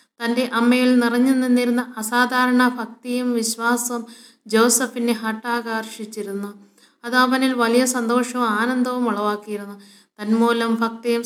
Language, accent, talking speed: Malayalam, native, 90 wpm